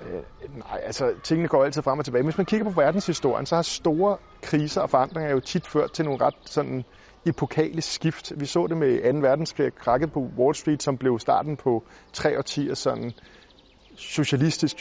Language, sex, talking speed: Danish, male, 185 wpm